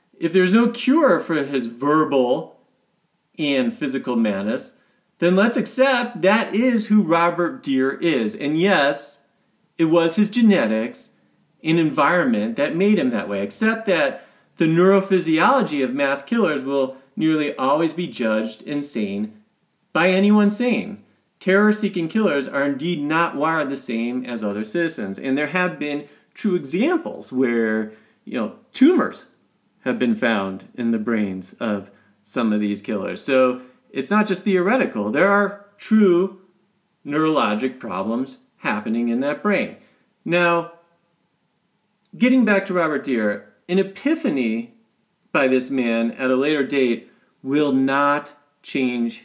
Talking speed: 140 wpm